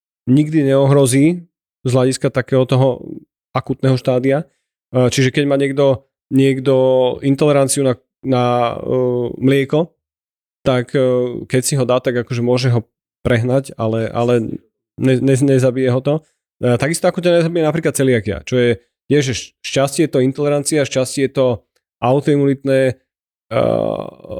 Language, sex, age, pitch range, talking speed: Slovak, male, 30-49, 125-140 Hz, 135 wpm